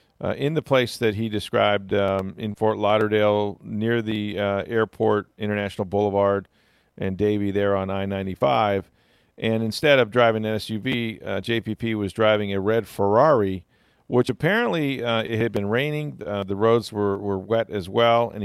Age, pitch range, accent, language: 40-59, 100-115 Hz, American, English